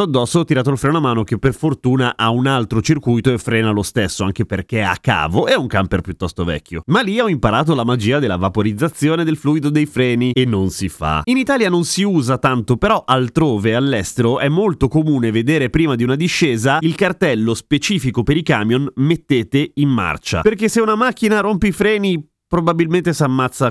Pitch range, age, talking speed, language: 110-150 Hz, 30-49, 200 wpm, Italian